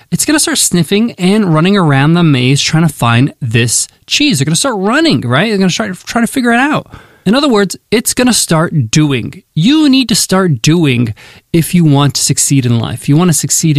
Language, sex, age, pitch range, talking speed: English, male, 20-39, 140-195 Hz, 235 wpm